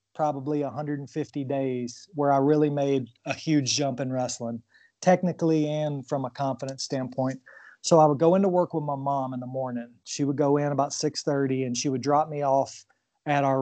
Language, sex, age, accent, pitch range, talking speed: English, male, 30-49, American, 130-150 Hz, 195 wpm